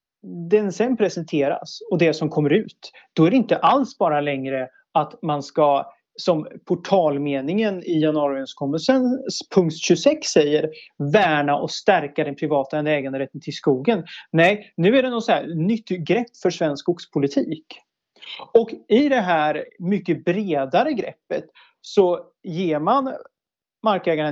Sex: male